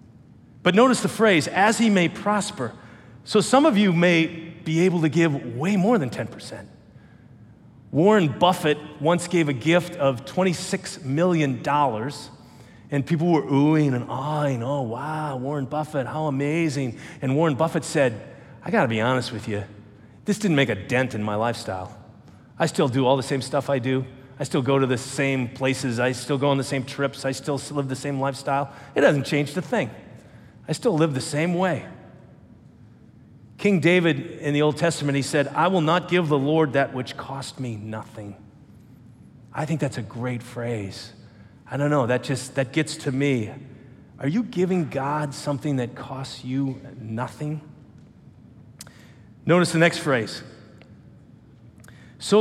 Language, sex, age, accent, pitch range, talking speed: English, male, 30-49, American, 125-165 Hz, 170 wpm